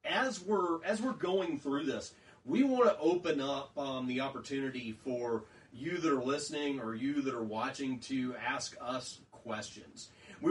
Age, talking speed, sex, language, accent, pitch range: 30-49, 170 wpm, male, English, American, 125-150 Hz